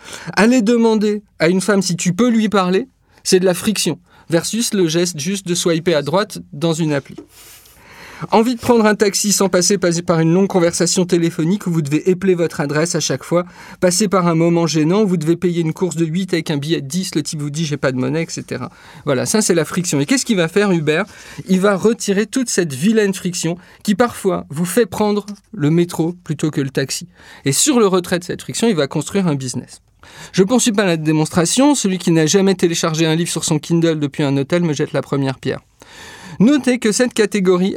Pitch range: 160-205 Hz